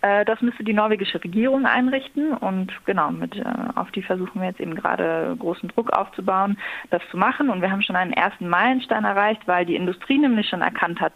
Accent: German